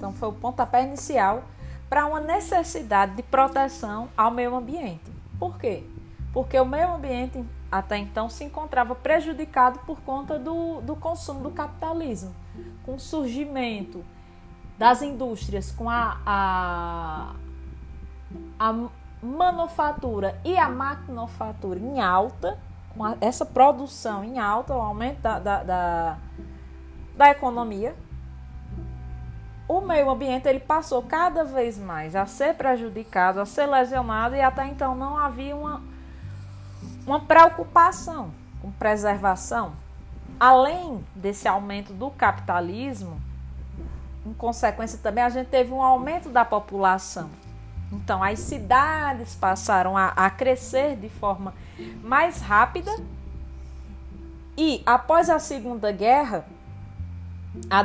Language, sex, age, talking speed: Portuguese, female, 20-39, 115 wpm